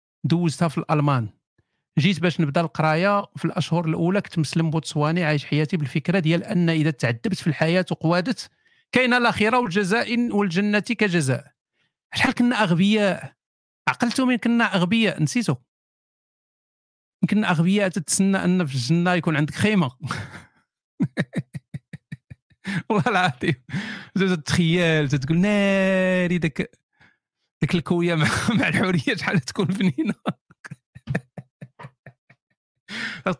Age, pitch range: 50-69, 150-200 Hz